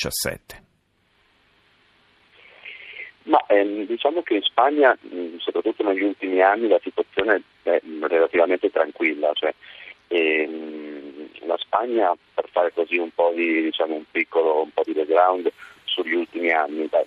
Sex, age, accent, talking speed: male, 40-59, native, 125 wpm